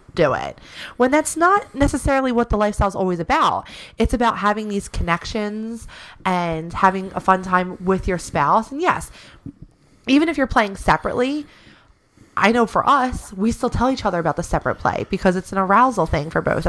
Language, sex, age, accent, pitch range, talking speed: English, female, 20-39, American, 175-230 Hz, 185 wpm